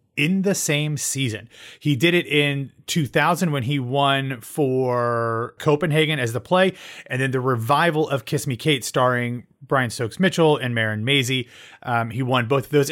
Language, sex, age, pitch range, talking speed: English, male, 30-49, 125-155 Hz, 170 wpm